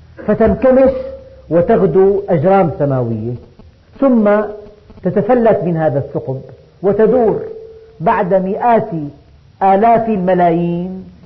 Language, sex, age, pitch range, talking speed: Arabic, female, 50-69, 150-205 Hz, 75 wpm